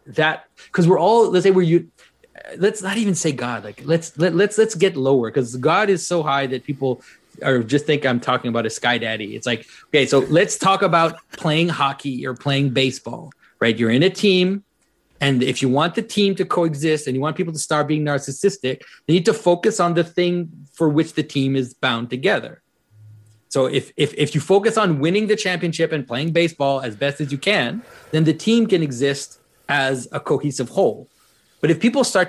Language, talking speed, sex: English, 210 wpm, male